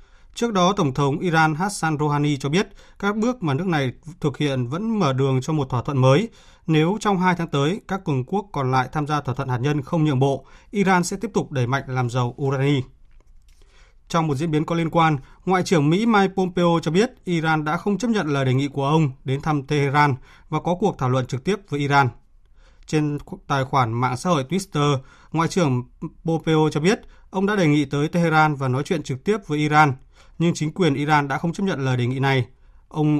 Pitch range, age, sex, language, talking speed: 140-180 Hz, 20-39, male, Vietnamese, 230 wpm